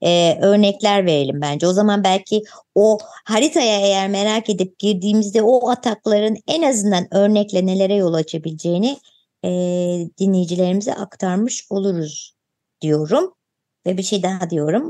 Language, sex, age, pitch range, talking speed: Turkish, male, 50-69, 165-230 Hz, 125 wpm